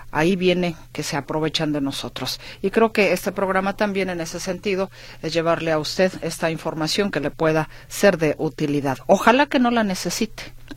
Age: 40-59